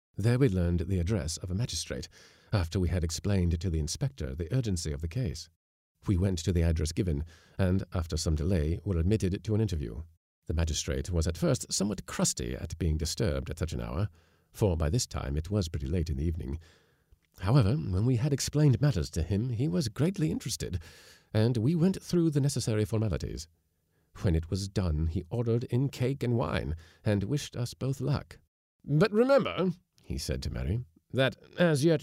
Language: English